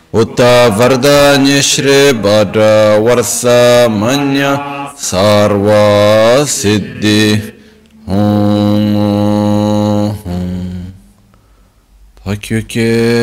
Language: Italian